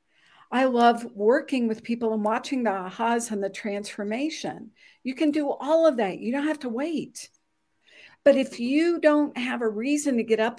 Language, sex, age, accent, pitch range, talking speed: English, female, 50-69, American, 215-285 Hz, 185 wpm